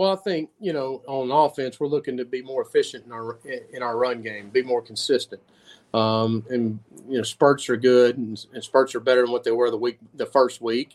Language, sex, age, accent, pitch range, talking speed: English, male, 40-59, American, 120-145 Hz, 235 wpm